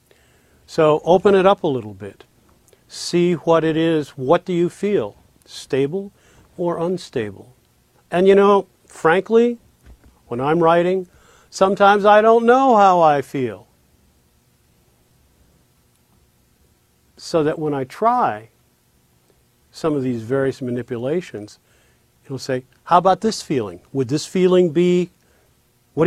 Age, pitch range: 50-69, 125-180 Hz